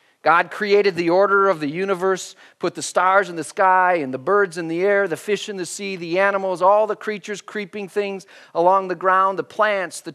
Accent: American